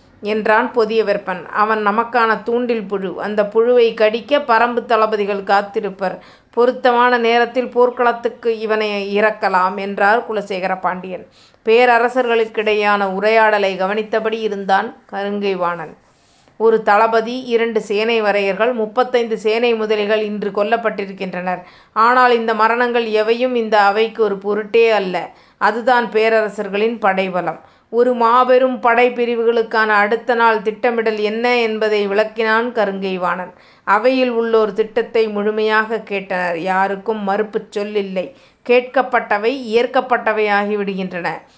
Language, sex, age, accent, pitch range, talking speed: Tamil, female, 30-49, native, 205-235 Hz, 100 wpm